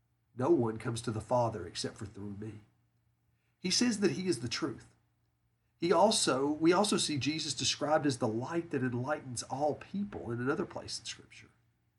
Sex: male